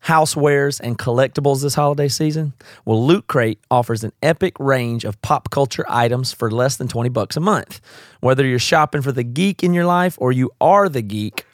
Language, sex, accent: English, male, American